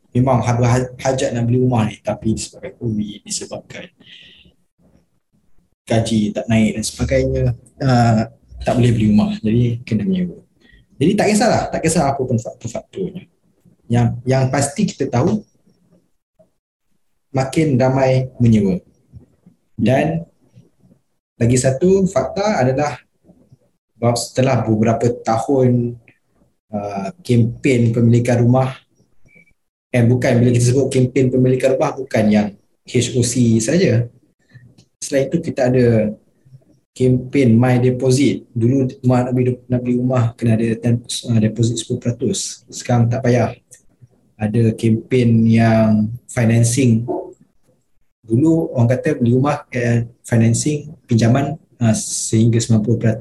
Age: 20-39